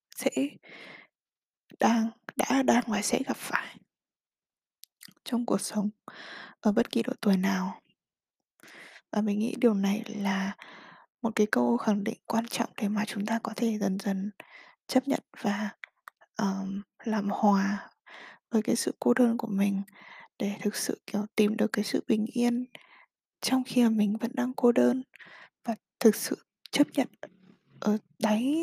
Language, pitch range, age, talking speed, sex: Vietnamese, 215-250 Hz, 20-39, 160 wpm, female